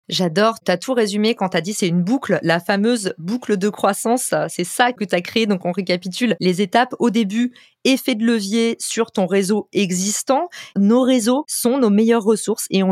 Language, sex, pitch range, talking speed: French, female, 185-230 Hz, 195 wpm